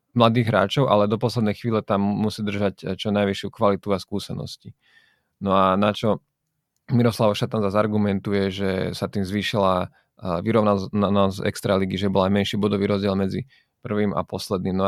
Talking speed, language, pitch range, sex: 160 wpm, Slovak, 100-110 Hz, male